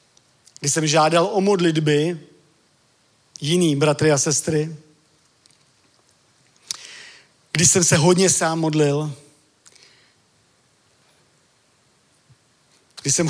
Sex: male